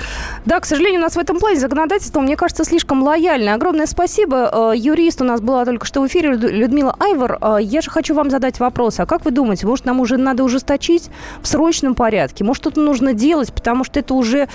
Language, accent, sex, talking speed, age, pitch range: Russian, native, female, 210 wpm, 20-39, 210-300 Hz